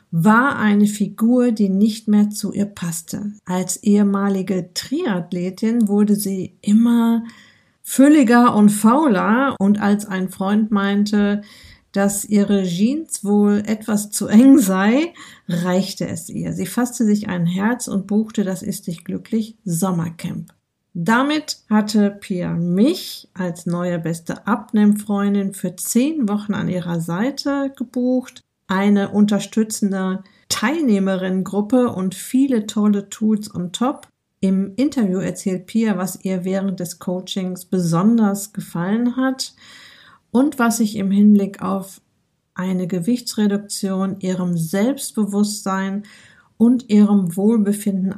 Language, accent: German, German